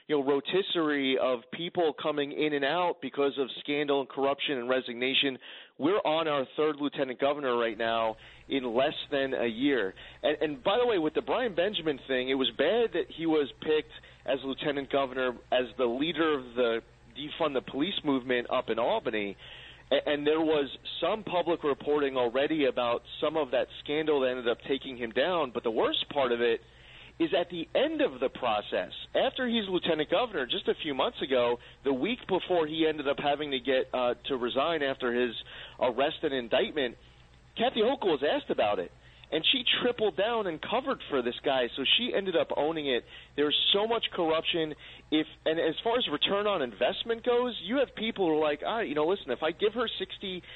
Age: 30-49